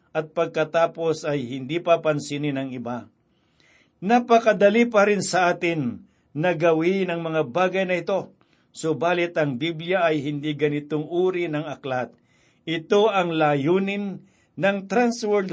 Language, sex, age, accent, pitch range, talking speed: Filipino, male, 60-79, native, 155-190 Hz, 125 wpm